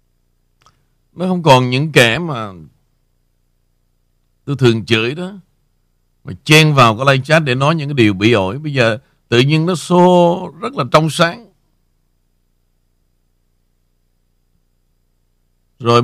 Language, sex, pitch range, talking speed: Vietnamese, male, 85-135 Hz, 125 wpm